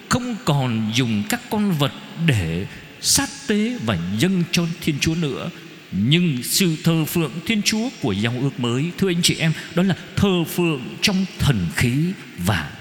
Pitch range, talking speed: 135-200 Hz, 175 wpm